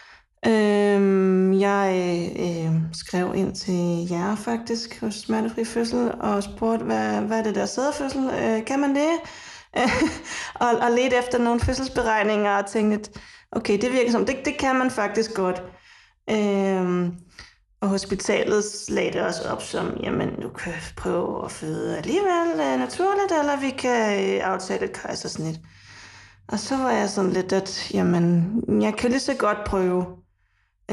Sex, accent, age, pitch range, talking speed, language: female, native, 30-49, 175-225 Hz, 145 wpm, Danish